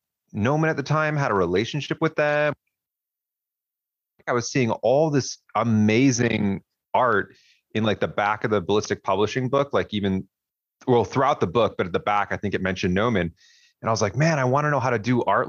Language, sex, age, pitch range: English, male, 30-49, 95-115 Hz